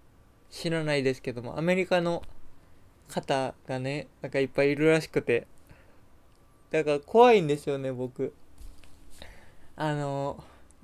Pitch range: 130-160 Hz